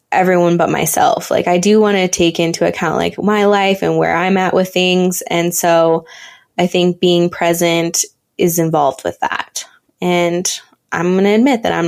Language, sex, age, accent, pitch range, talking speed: English, female, 20-39, American, 190-230 Hz, 185 wpm